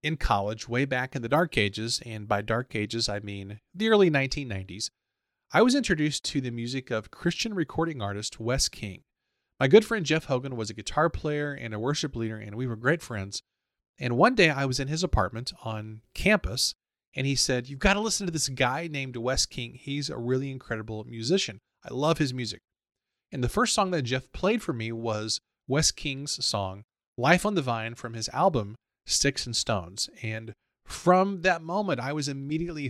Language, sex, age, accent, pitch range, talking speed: English, male, 30-49, American, 115-155 Hz, 200 wpm